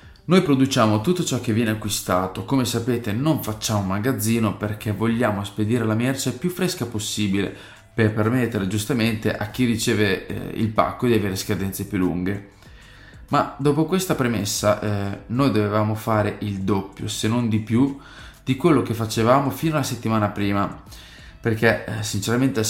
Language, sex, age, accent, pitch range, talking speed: Italian, male, 20-39, native, 105-120 Hz, 155 wpm